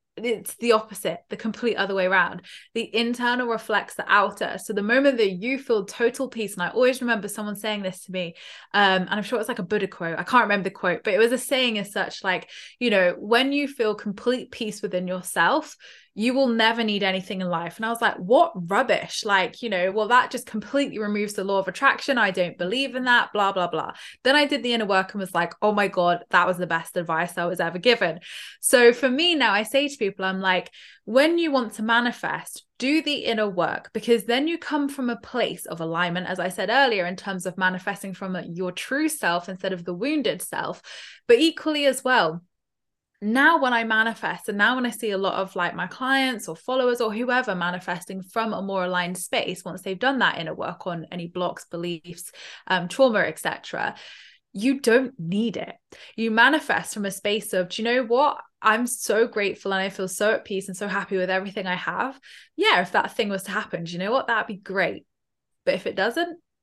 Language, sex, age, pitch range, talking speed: English, female, 20-39, 185-245 Hz, 225 wpm